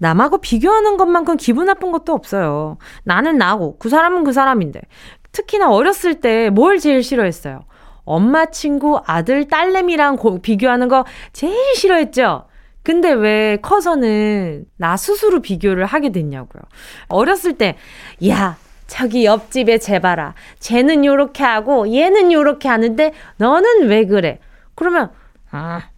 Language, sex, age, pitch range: Korean, female, 20-39, 200-325 Hz